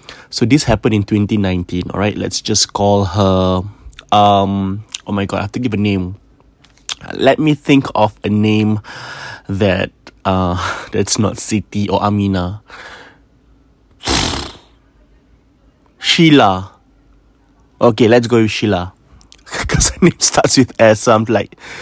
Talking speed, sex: 135 wpm, male